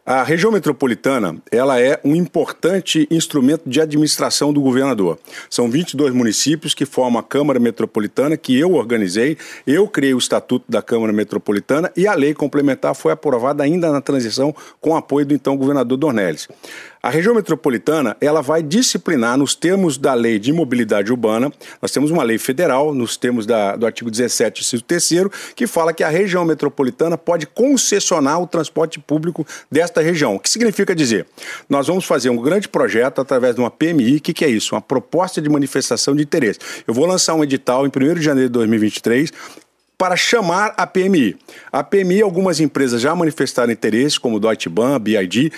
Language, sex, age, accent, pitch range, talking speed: Portuguese, male, 50-69, Brazilian, 135-185 Hz, 180 wpm